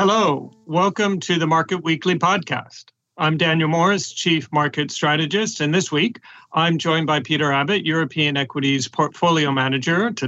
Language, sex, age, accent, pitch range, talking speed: English, male, 40-59, American, 140-180 Hz, 150 wpm